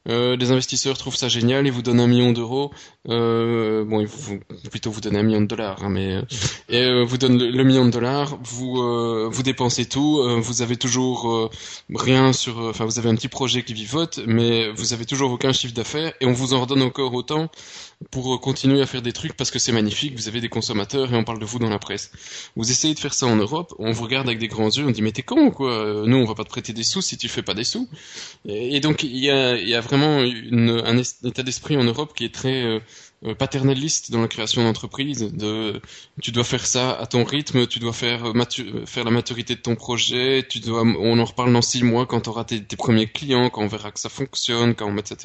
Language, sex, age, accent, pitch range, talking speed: French, male, 20-39, French, 115-130 Hz, 255 wpm